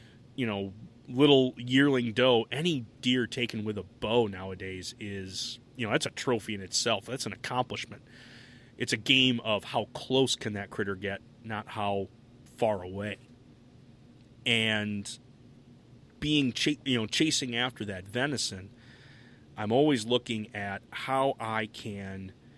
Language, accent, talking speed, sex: English, American, 140 wpm, male